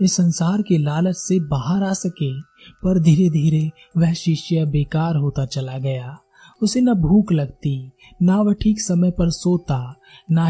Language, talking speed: Hindi, 165 wpm